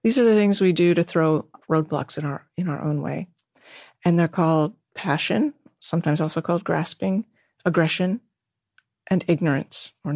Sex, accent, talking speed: female, American, 160 wpm